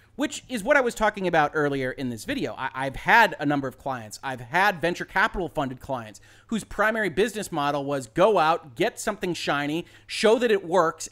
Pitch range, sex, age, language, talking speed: 140-195 Hz, male, 30-49, English, 200 wpm